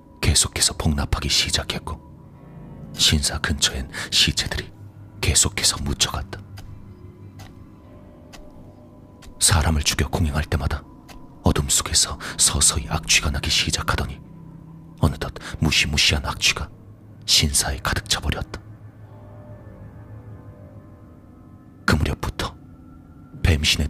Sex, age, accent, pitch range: male, 40-59, native, 80-105 Hz